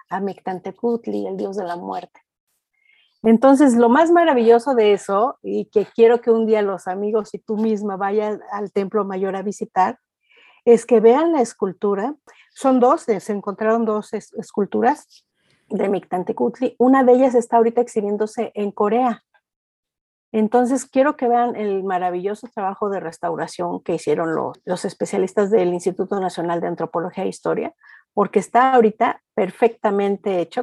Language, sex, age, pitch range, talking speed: English, female, 50-69, 195-235 Hz, 155 wpm